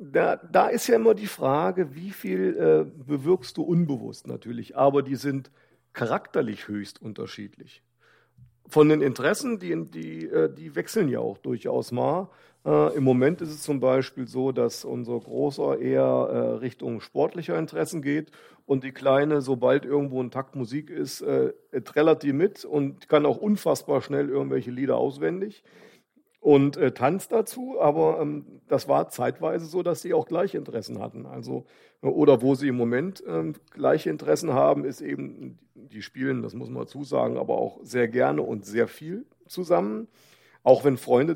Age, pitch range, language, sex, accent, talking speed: 40-59, 120-160 Hz, German, male, German, 165 wpm